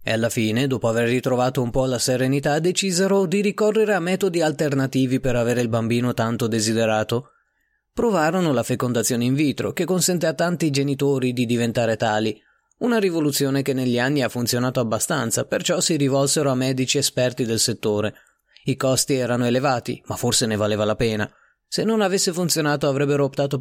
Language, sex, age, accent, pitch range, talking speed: Italian, male, 30-49, native, 120-175 Hz, 170 wpm